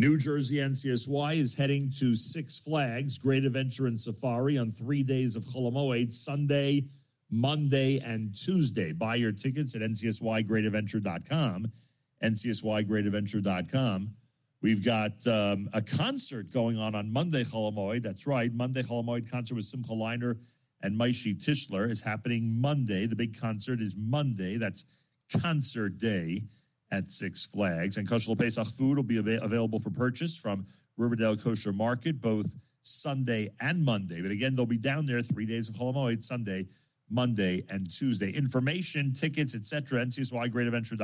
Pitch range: 110-135 Hz